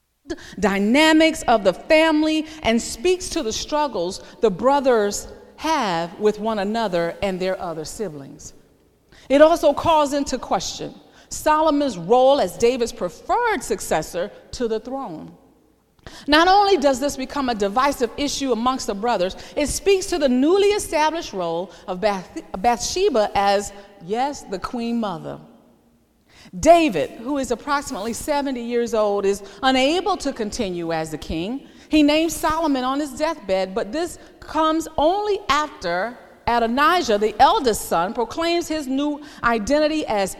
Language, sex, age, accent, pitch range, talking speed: English, female, 40-59, American, 210-310 Hz, 135 wpm